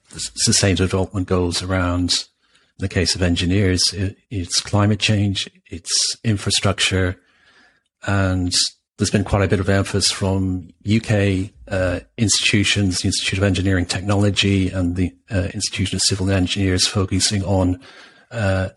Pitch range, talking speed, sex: 90-100 Hz, 135 wpm, male